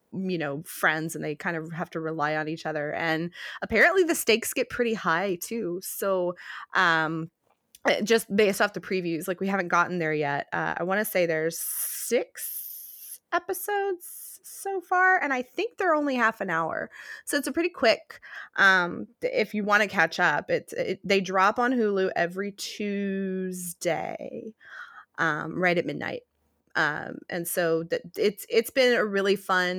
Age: 20-39